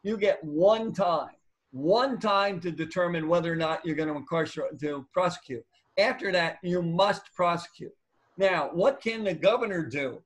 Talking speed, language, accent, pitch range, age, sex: 165 wpm, English, American, 160-195 Hz, 50-69, male